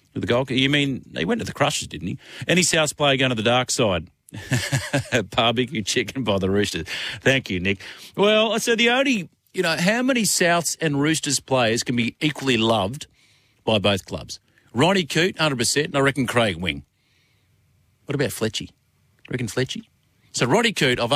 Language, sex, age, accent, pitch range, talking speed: English, male, 50-69, Australian, 100-140 Hz, 185 wpm